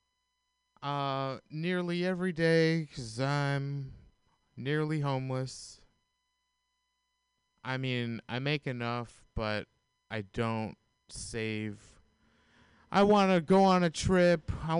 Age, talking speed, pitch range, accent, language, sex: 30-49, 100 wpm, 120-170 Hz, American, English, male